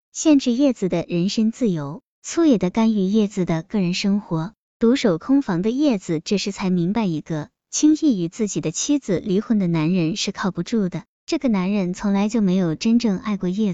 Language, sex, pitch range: Chinese, male, 180-240 Hz